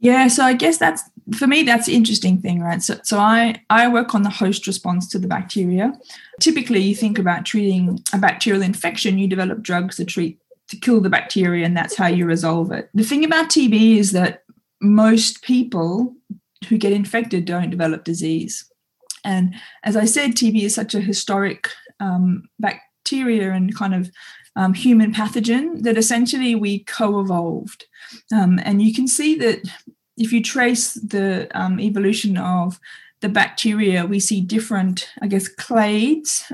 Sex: female